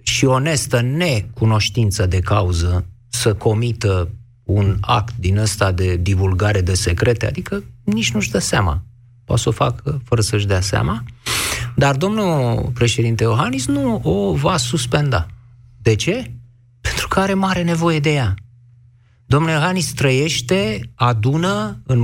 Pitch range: 105-135 Hz